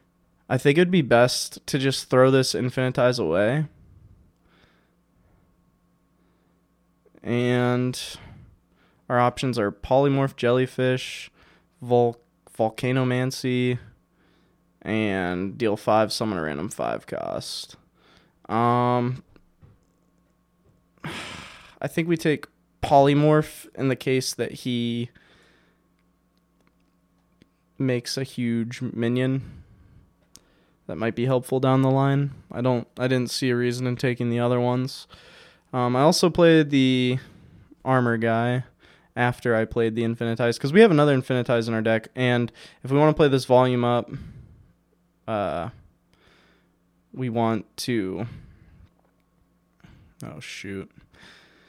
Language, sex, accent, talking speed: English, male, American, 115 wpm